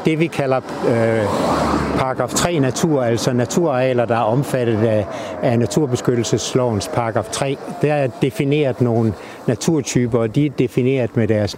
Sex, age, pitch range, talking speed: male, 60-79, 110-135 Hz, 145 wpm